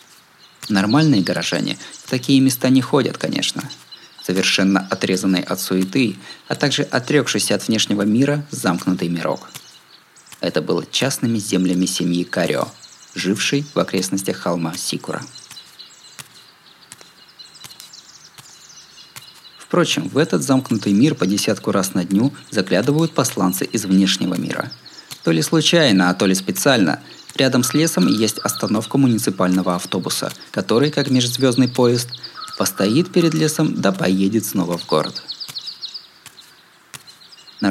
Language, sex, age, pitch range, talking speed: Russian, male, 20-39, 95-130 Hz, 115 wpm